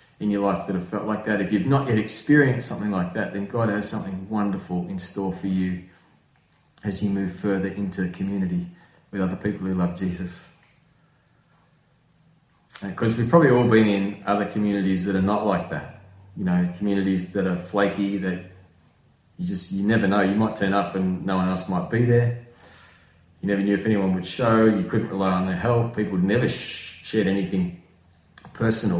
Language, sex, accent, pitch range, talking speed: English, male, Australian, 90-110 Hz, 190 wpm